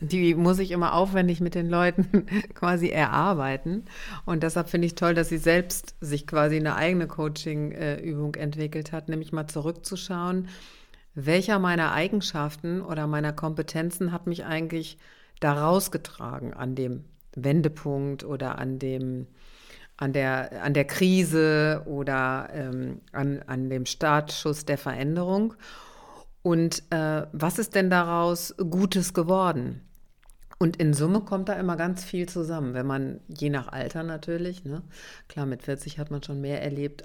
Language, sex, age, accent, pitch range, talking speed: German, female, 50-69, German, 145-180 Hz, 145 wpm